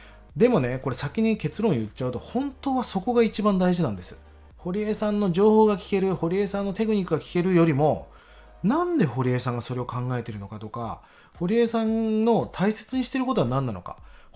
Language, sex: Japanese, male